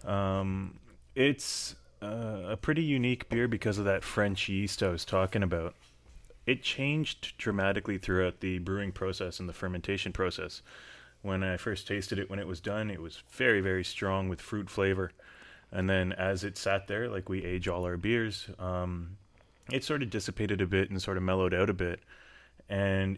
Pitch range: 90-105 Hz